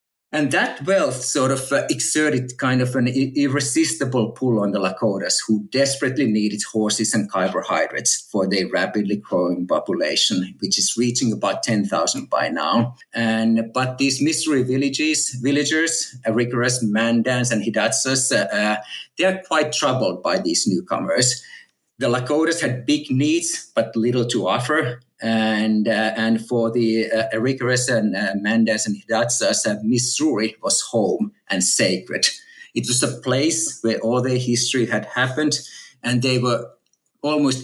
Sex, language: male, English